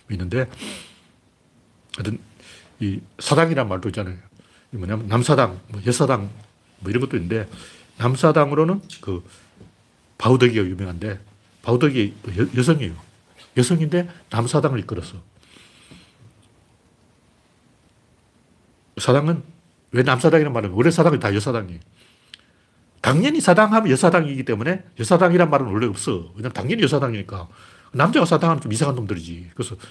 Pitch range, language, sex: 105-135 Hz, Korean, male